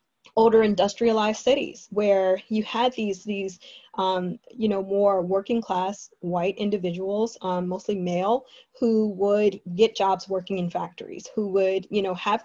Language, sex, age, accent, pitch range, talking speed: English, female, 20-39, American, 180-205 Hz, 150 wpm